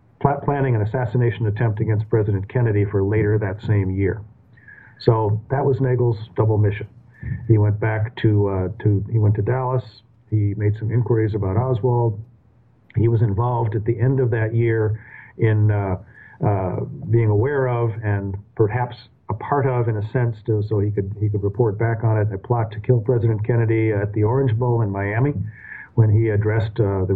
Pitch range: 105-125 Hz